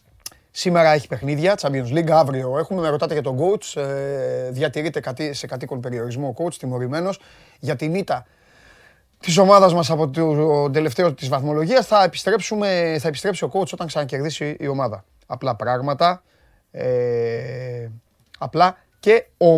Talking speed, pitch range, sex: 90 wpm, 135-185 Hz, male